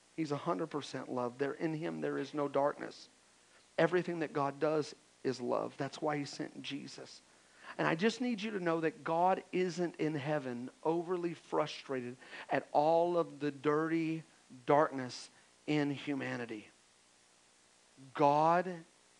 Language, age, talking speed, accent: English, 40-59, 140 wpm, American